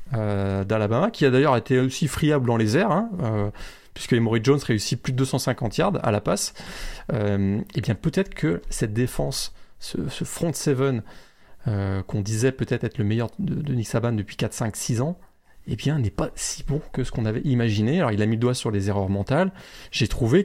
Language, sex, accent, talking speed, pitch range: French, male, French, 215 wpm, 110-150 Hz